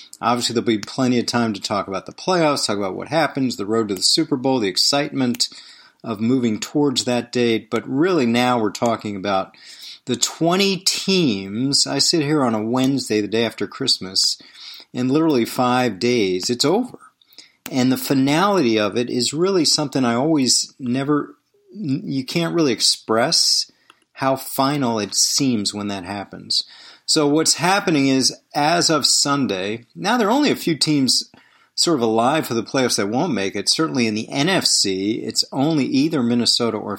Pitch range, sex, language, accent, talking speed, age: 110-145 Hz, male, English, American, 175 wpm, 40-59